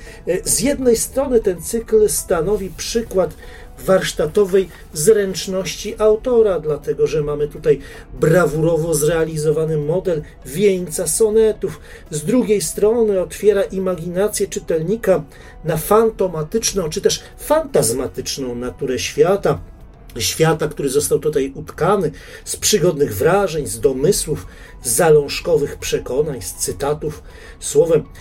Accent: native